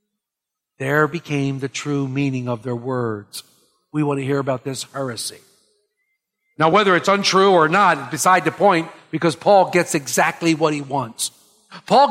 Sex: male